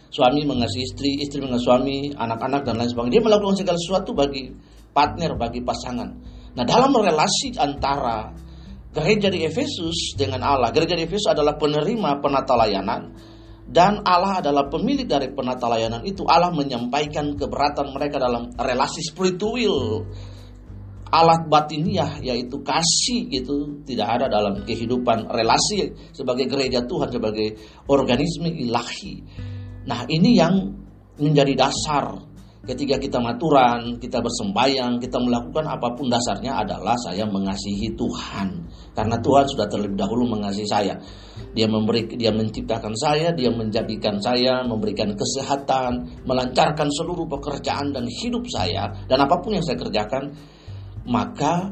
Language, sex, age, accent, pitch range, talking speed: Indonesian, male, 40-59, native, 110-150 Hz, 130 wpm